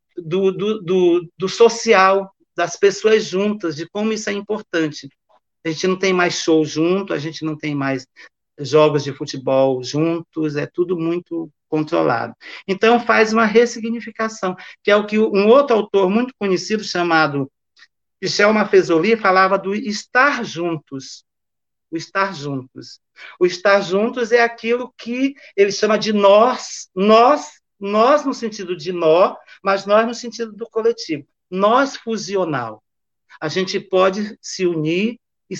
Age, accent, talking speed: 50-69, Brazilian, 145 wpm